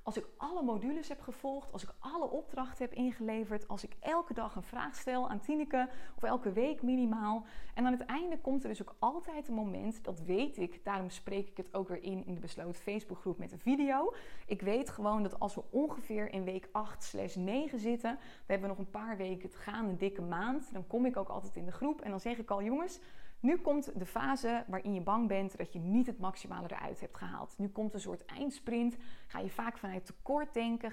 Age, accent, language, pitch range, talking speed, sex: 20-39, Dutch, Dutch, 195-255 Hz, 230 wpm, female